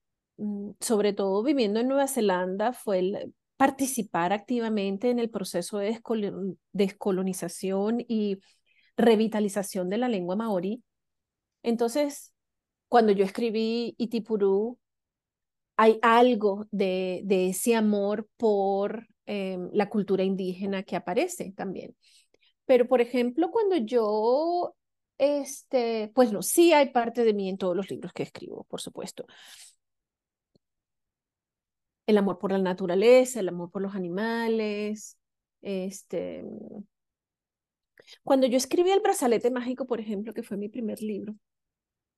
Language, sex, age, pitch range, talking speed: Spanish, female, 30-49, 200-245 Hz, 120 wpm